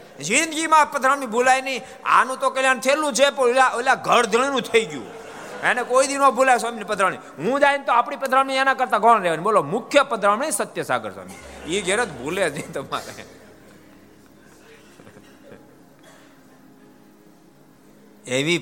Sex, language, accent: male, Gujarati, native